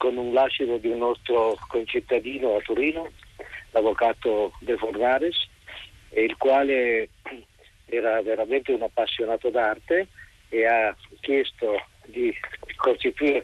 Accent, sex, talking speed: native, male, 105 wpm